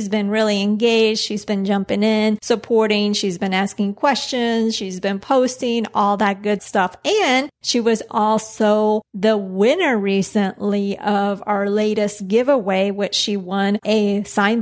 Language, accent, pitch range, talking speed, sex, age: English, American, 200-225 Hz, 145 wpm, female, 30-49